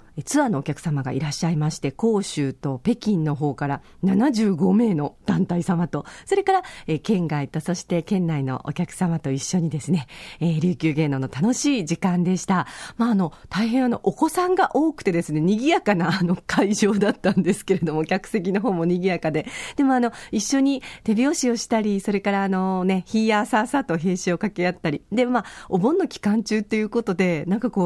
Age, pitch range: 40-59, 165-240 Hz